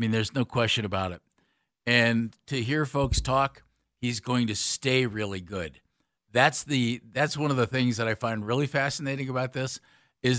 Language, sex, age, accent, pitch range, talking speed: English, male, 50-69, American, 110-135 Hz, 190 wpm